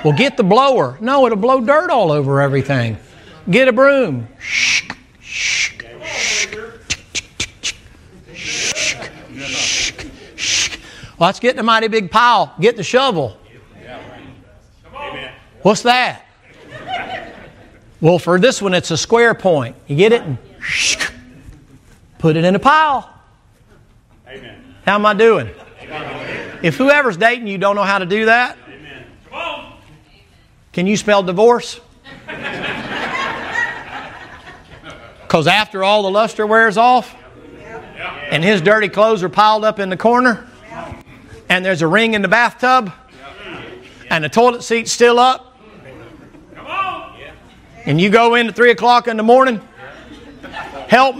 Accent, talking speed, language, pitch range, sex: American, 125 wpm, English, 180-250 Hz, male